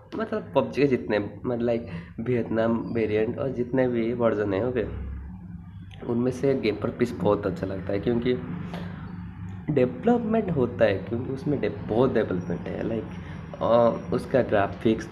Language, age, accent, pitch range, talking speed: Hindi, 20-39, native, 105-135 Hz, 140 wpm